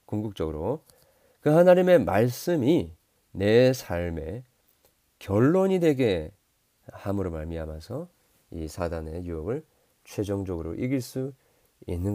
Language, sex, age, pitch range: Korean, male, 40-59, 90-125 Hz